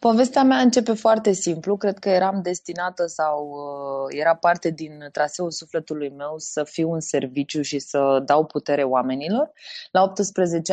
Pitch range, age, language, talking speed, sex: 140-185 Hz, 20-39, Romanian, 150 wpm, female